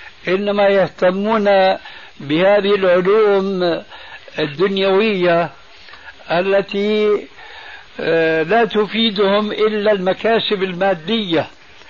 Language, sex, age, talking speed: Arabic, male, 60-79, 55 wpm